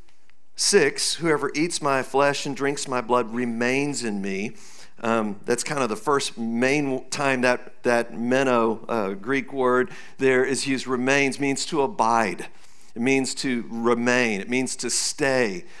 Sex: male